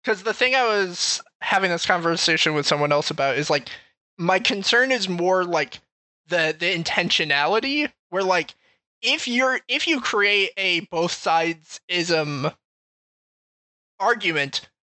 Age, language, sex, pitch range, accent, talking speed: 20-39, English, male, 160-220 Hz, American, 135 wpm